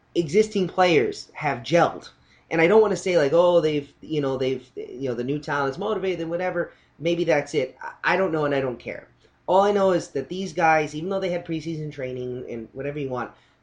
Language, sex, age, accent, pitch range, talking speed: English, male, 30-49, American, 140-190 Hz, 225 wpm